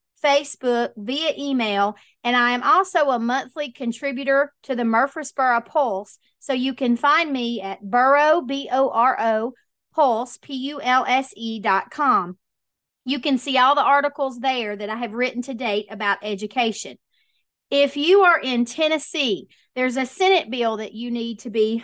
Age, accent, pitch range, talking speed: 40-59, American, 230-280 Hz, 150 wpm